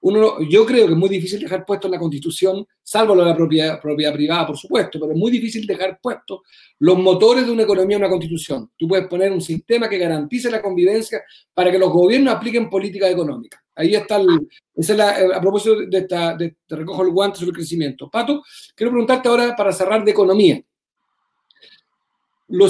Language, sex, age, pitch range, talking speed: Spanish, male, 40-59, 170-225 Hz, 200 wpm